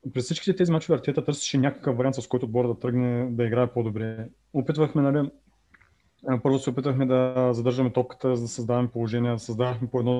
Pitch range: 120-140 Hz